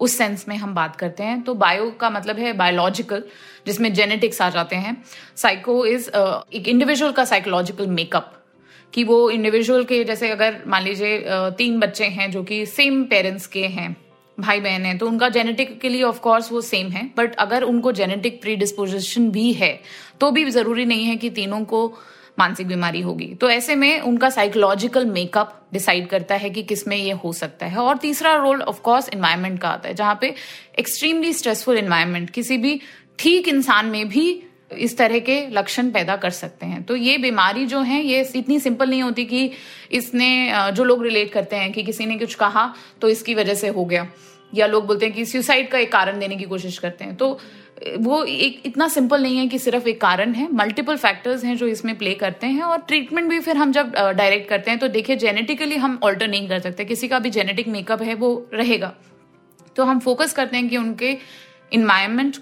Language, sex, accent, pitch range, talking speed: Hindi, female, native, 200-255 Hz, 205 wpm